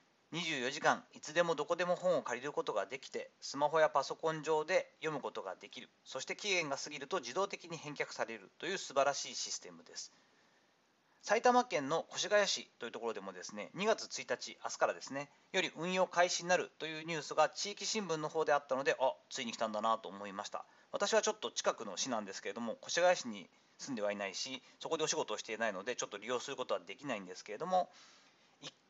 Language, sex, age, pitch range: Japanese, male, 40-59, 155-215 Hz